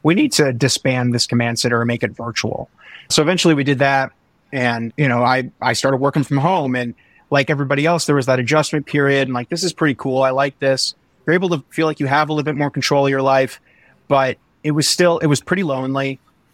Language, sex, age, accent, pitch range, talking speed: English, male, 30-49, American, 130-150 Hz, 240 wpm